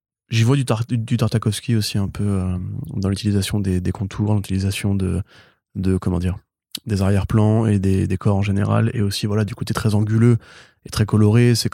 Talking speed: 200 wpm